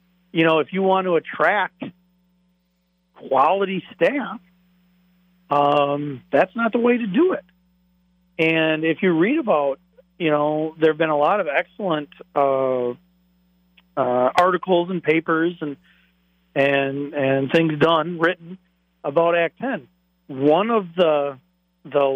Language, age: English, 50-69